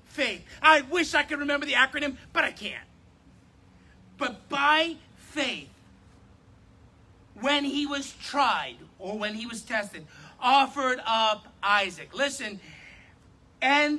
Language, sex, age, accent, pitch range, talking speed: English, male, 40-59, American, 215-315 Hz, 120 wpm